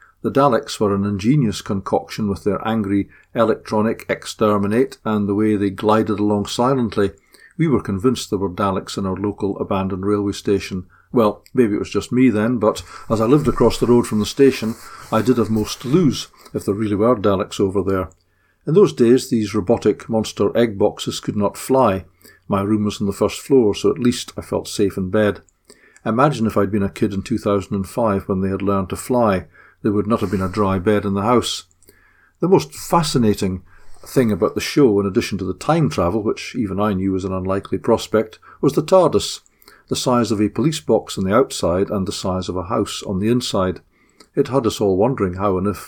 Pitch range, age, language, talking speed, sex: 100-115 Hz, 50-69, English, 210 wpm, male